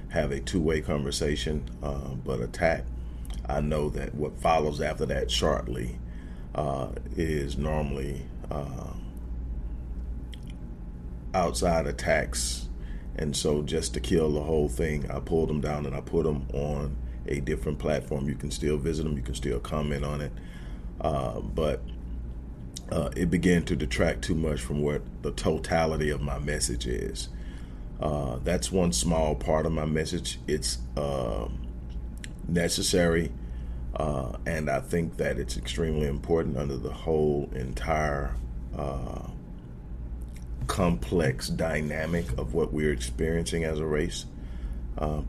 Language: English